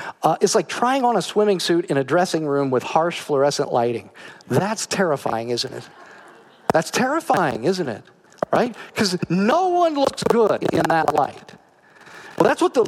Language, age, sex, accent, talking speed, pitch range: English, 50-69, male, American, 170 wpm, 165-255 Hz